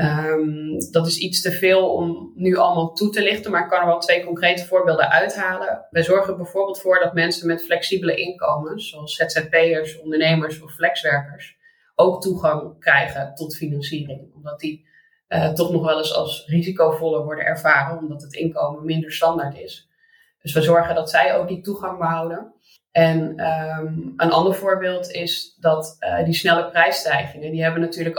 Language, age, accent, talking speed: Dutch, 20-39, Dutch, 165 wpm